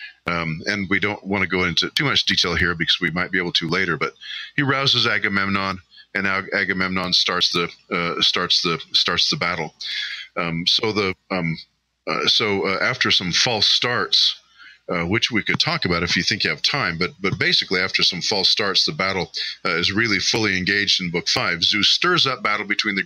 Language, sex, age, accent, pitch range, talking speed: English, male, 40-59, American, 90-110 Hz, 180 wpm